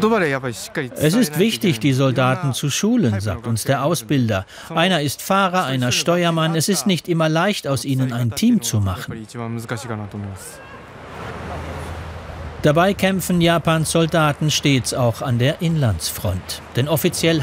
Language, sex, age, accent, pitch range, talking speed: German, male, 40-59, German, 120-170 Hz, 130 wpm